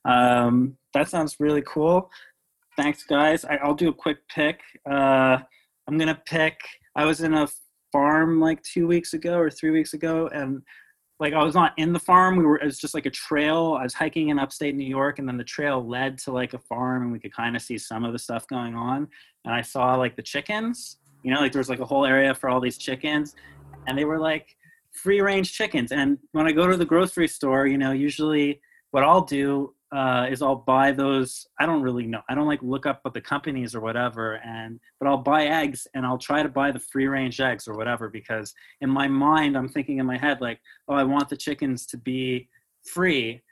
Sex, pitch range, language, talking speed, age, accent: male, 130-155 Hz, English, 225 wpm, 20-39, American